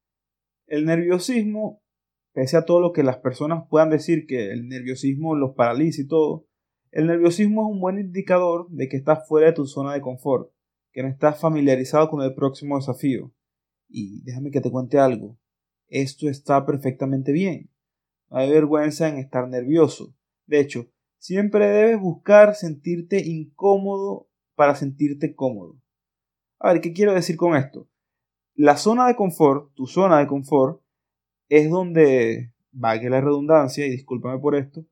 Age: 30-49